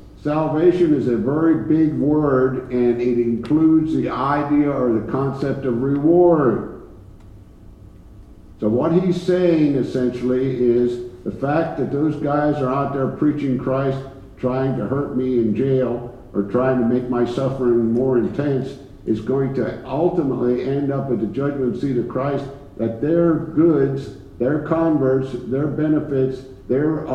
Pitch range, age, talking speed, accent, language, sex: 105-140 Hz, 60-79, 145 wpm, American, English, male